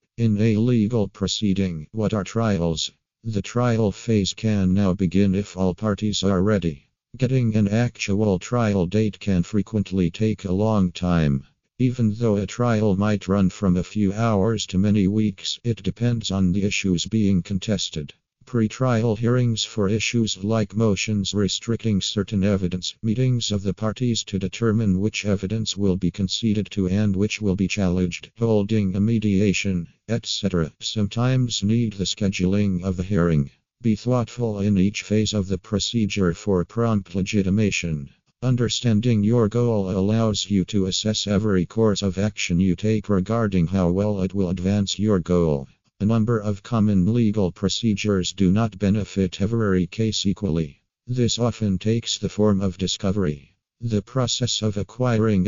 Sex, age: male, 50-69